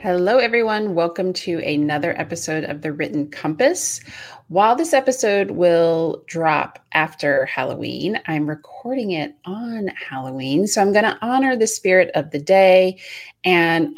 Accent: American